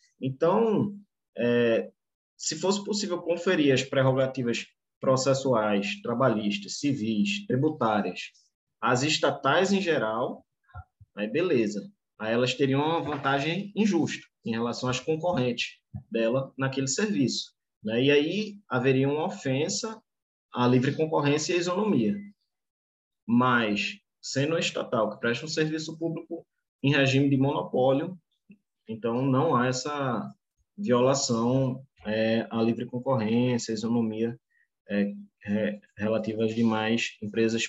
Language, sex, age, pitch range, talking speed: Portuguese, male, 20-39, 115-160 Hz, 110 wpm